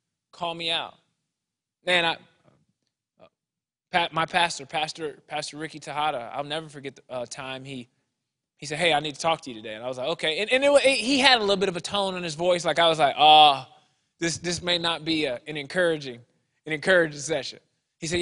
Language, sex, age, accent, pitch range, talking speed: English, male, 20-39, American, 145-185 Hz, 225 wpm